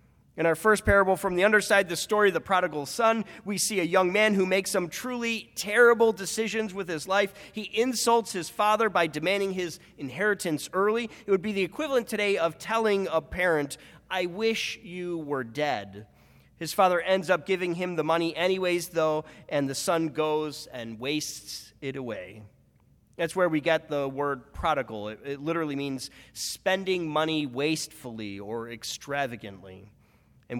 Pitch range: 145-195 Hz